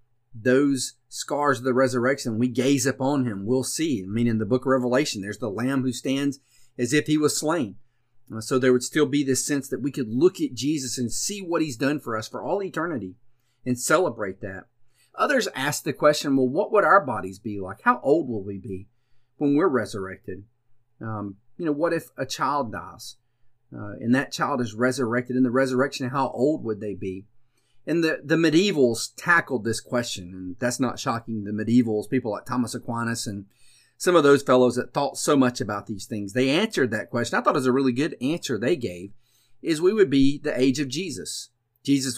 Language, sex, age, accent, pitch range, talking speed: English, male, 40-59, American, 115-135 Hz, 210 wpm